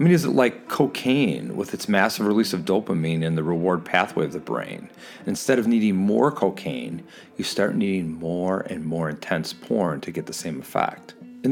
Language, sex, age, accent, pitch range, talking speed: English, male, 40-59, American, 90-120 Hz, 200 wpm